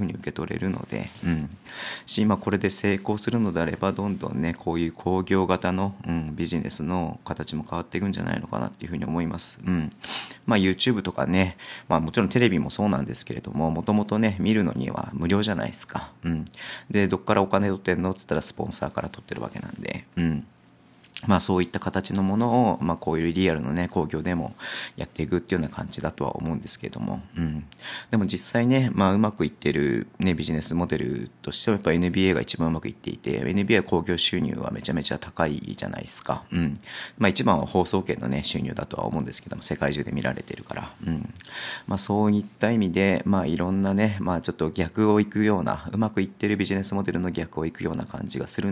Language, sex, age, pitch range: Japanese, male, 40-59, 85-100 Hz